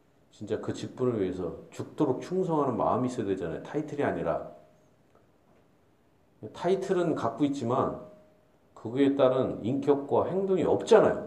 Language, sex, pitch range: Korean, male, 110-160 Hz